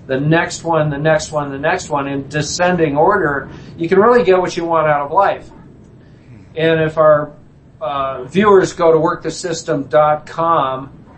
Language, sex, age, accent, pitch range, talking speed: English, male, 50-69, American, 145-165 Hz, 160 wpm